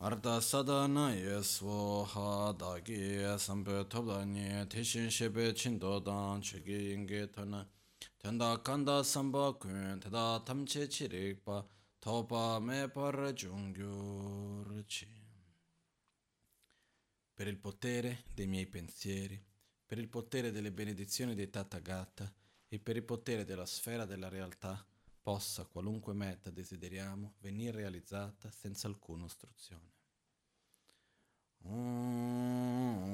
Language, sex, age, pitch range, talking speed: Italian, male, 30-49, 100-120 Hz, 100 wpm